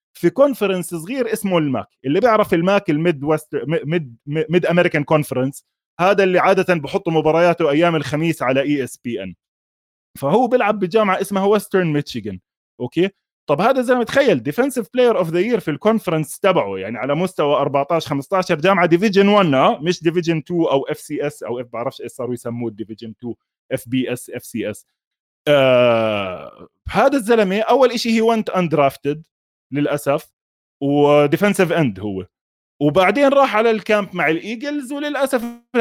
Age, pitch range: 20-39, 145-210 Hz